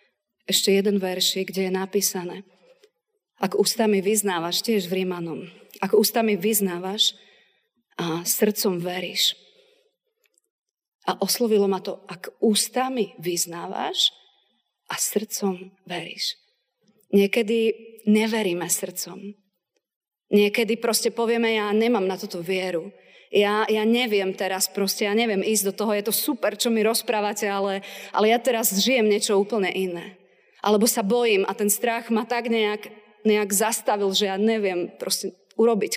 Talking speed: 130 wpm